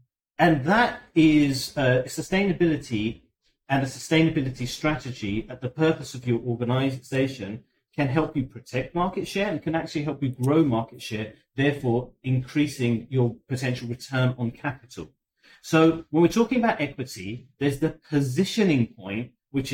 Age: 40-59